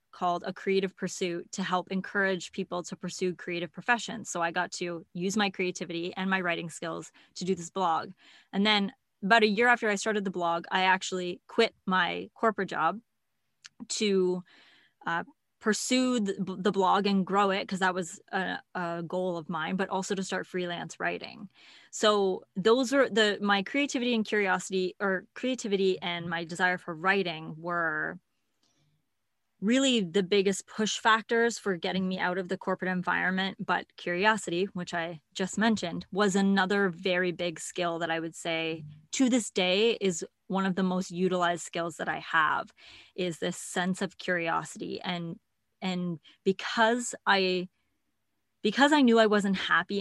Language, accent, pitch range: English, American, 180-210 Hz